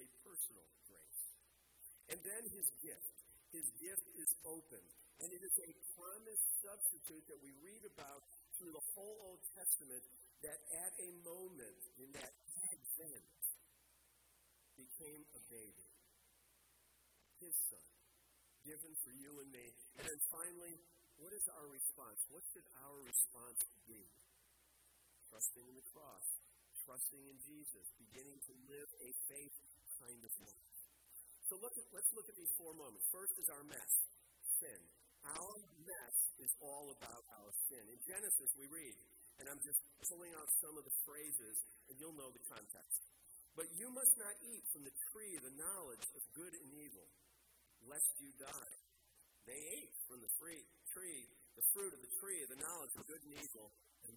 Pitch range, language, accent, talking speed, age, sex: 110-175 Hz, English, American, 155 wpm, 50-69, male